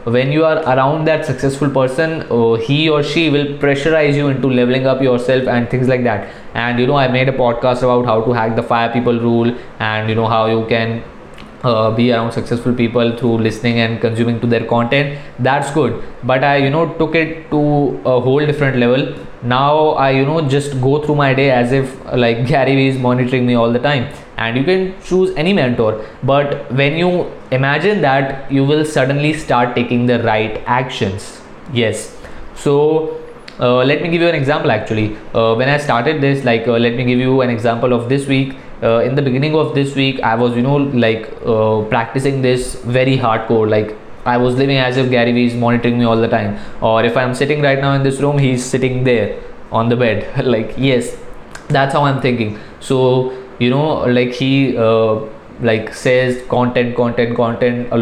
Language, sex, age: Hindi, male, 20-39